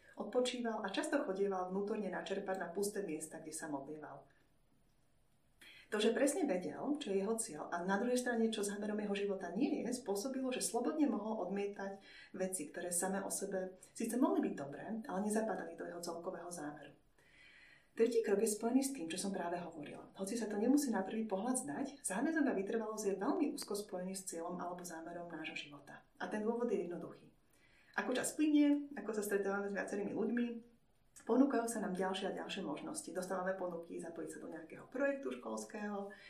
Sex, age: female, 30-49